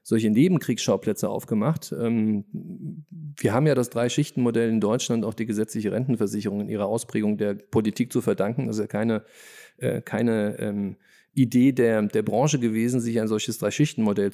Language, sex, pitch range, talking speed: German, male, 110-130 Hz, 155 wpm